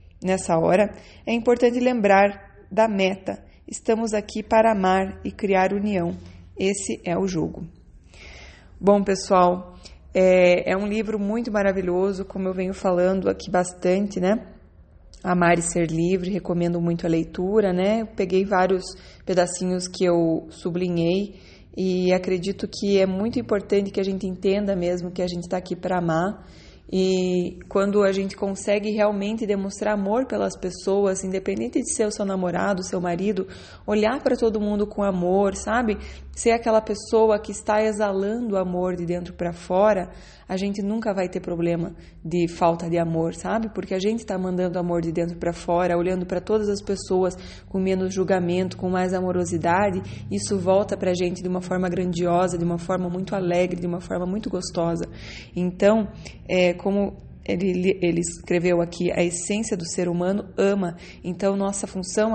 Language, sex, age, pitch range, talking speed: Portuguese, female, 20-39, 180-205 Hz, 165 wpm